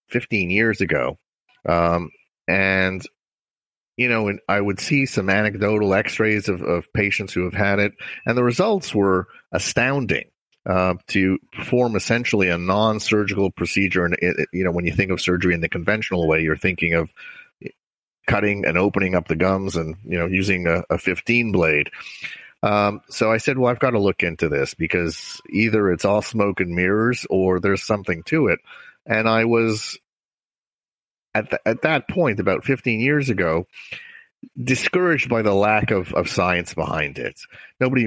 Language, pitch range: English, 90-115 Hz